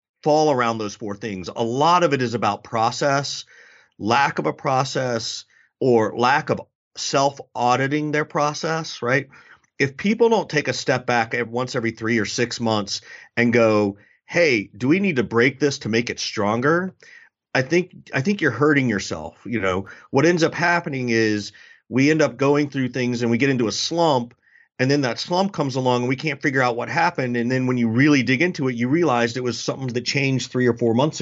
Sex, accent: male, American